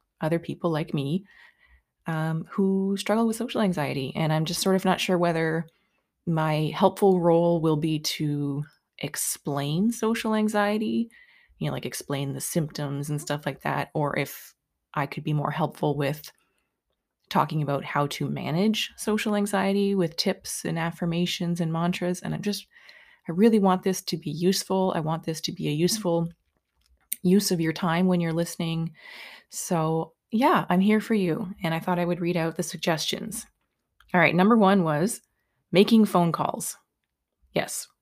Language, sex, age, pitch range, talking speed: English, female, 20-39, 155-195 Hz, 165 wpm